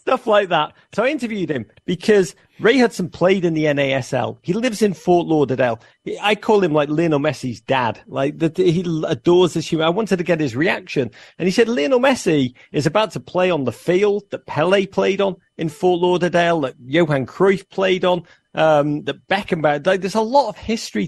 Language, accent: English, British